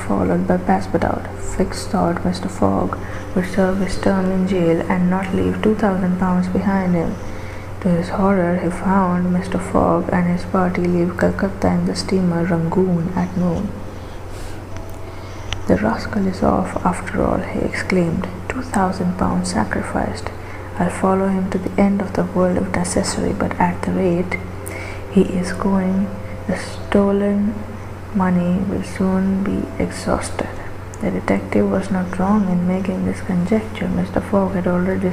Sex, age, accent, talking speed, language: female, 20-39, Indian, 150 wpm, English